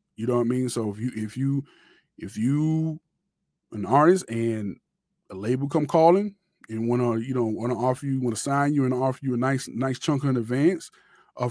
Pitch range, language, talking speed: 110-160 Hz, English, 220 wpm